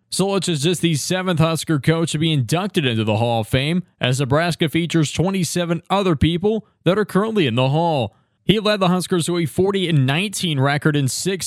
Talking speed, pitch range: 195 wpm, 145-185 Hz